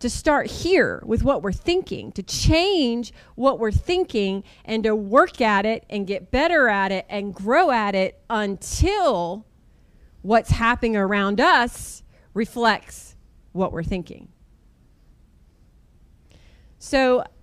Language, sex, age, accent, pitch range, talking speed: English, female, 30-49, American, 200-280 Hz, 125 wpm